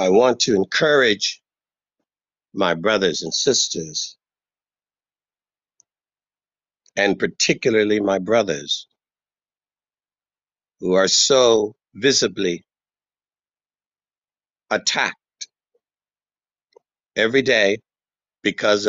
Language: English